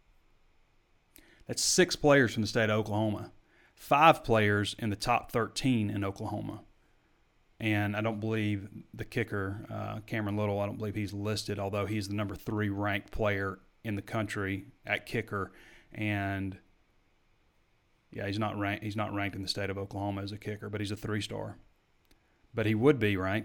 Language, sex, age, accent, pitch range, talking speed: English, male, 30-49, American, 100-115 Hz, 165 wpm